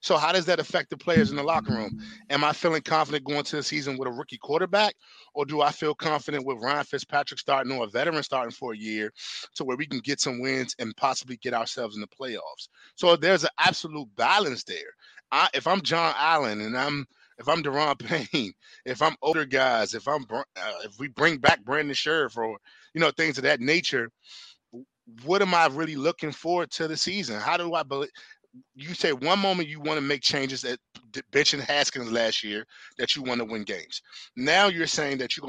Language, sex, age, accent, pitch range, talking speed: English, male, 20-39, American, 130-175 Hz, 215 wpm